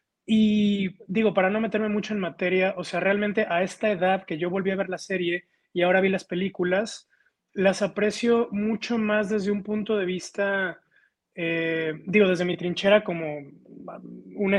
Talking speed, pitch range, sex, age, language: 175 wpm, 175-205 Hz, male, 20-39, Spanish